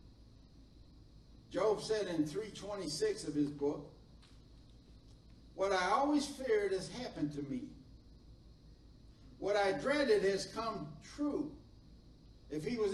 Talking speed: 110 wpm